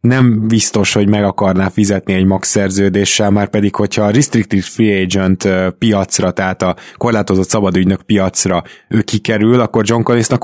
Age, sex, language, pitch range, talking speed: 20-39, male, Hungarian, 95-115 Hz, 155 wpm